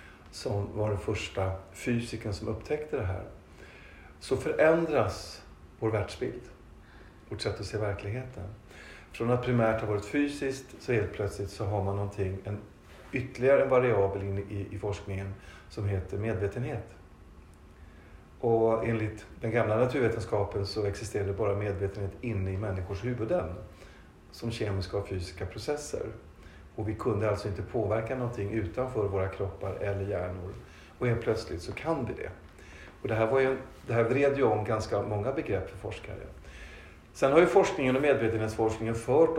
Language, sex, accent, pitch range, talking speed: Swedish, male, native, 100-115 Hz, 155 wpm